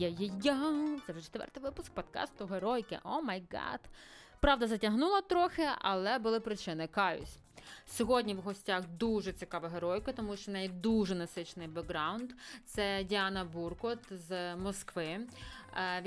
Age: 20-39